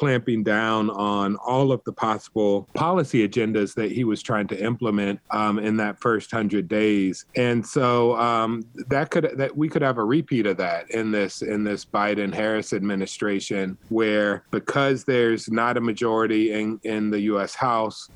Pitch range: 100-120 Hz